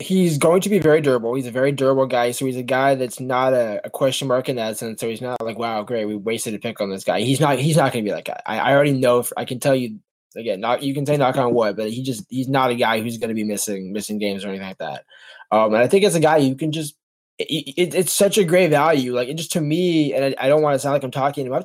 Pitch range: 130-160 Hz